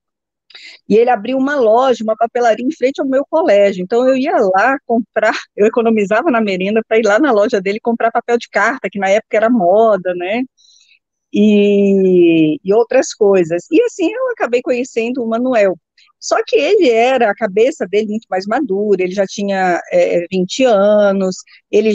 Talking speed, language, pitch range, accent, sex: 175 wpm, Portuguese, 210-270 Hz, Brazilian, female